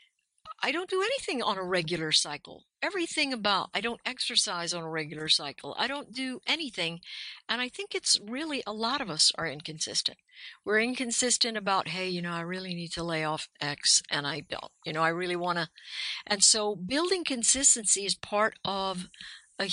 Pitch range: 175-225 Hz